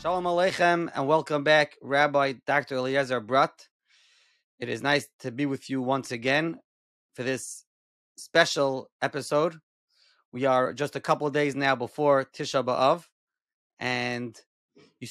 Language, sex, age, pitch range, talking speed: English, male, 30-49, 130-155 Hz, 140 wpm